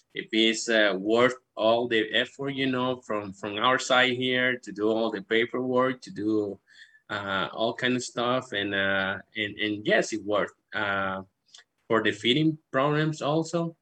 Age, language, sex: 20-39, English, male